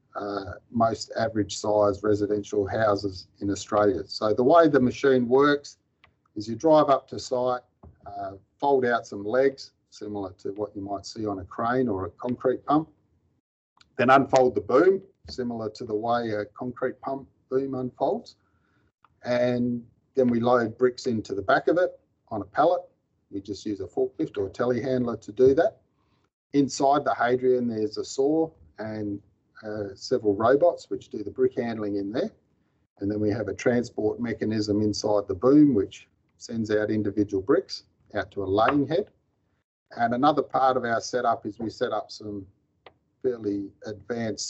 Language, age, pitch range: English, 40-59, 105-130 Hz